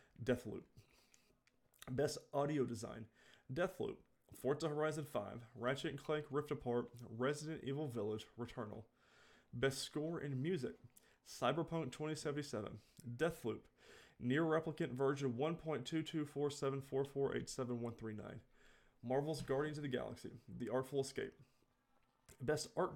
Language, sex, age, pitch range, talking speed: English, male, 20-39, 120-150 Hz, 100 wpm